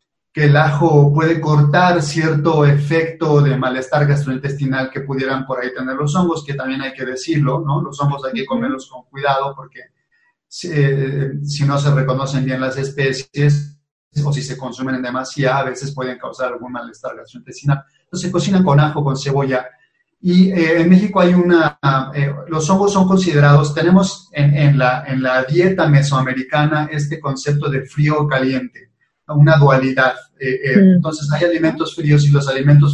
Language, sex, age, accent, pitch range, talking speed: Spanish, male, 30-49, Mexican, 135-160 Hz, 170 wpm